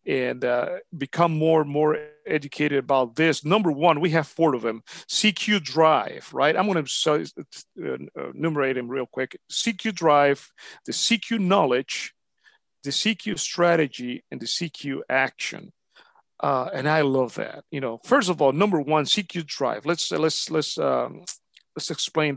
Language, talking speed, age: English, 155 wpm, 40-59